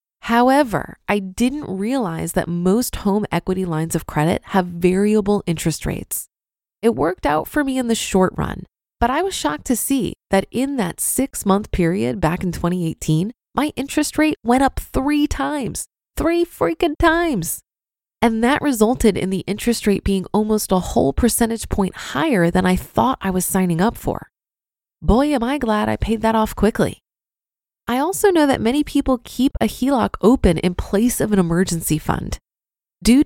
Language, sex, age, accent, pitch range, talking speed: English, female, 20-39, American, 180-255 Hz, 175 wpm